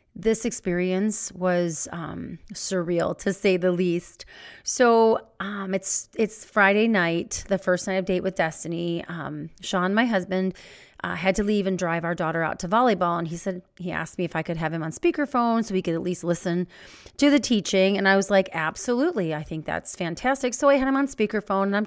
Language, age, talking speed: English, 30-49, 210 wpm